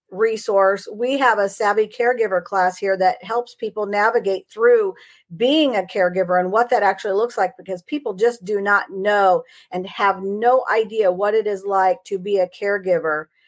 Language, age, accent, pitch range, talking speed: English, 50-69, American, 195-245 Hz, 180 wpm